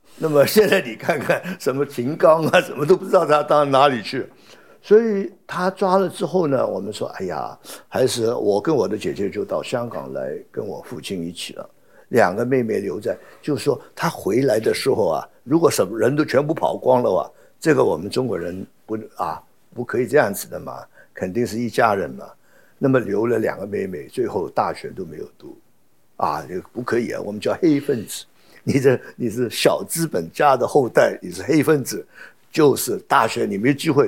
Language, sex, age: Chinese, male, 60-79